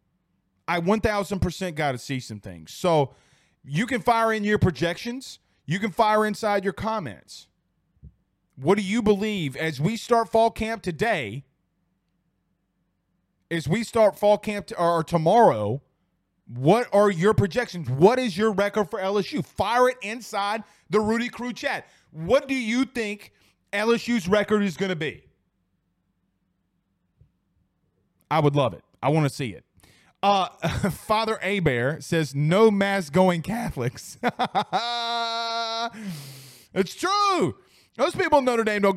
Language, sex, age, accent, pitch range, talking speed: English, male, 30-49, American, 150-220 Hz, 135 wpm